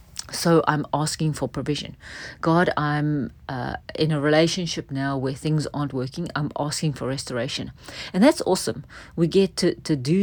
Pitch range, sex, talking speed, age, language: 140-175 Hz, female, 165 wpm, 40-59, English